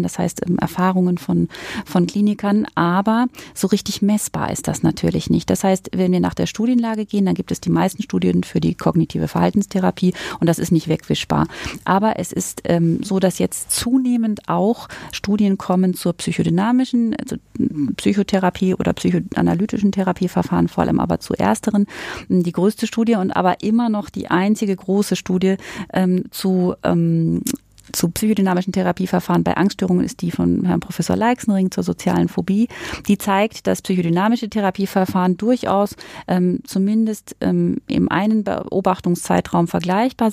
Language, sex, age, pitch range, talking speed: German, female, 30-49, 175-215 Hz, 150 wpm